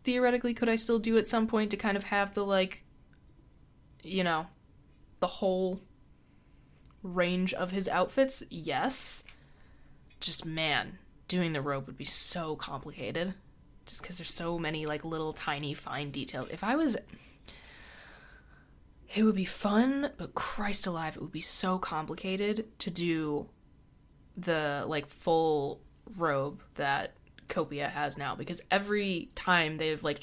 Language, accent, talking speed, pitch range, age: English, American, 145 wpm, 155-195 Hz, 20-39